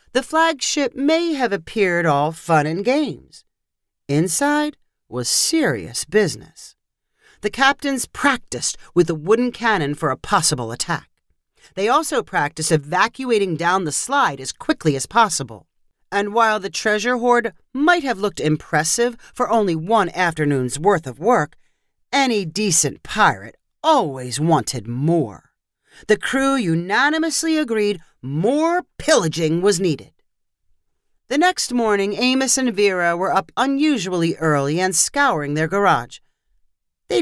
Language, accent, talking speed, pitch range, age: English, American, 130 wpm, 155-250 Hz, 40-59